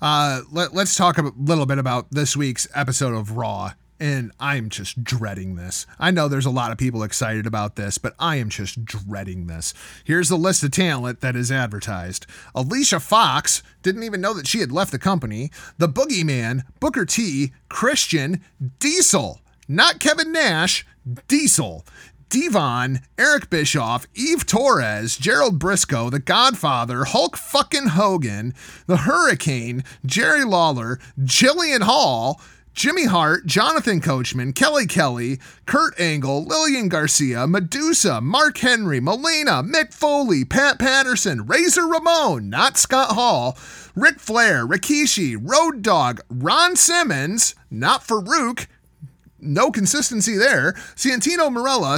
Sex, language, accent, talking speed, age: male, English, American, 135 wpm, 30-49